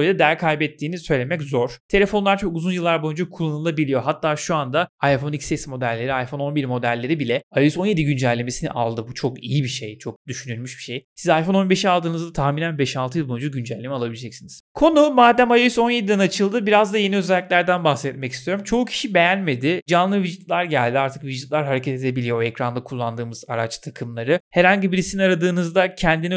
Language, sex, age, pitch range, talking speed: Turkish, male, 30-49, 130-175 Hz, 170 wpm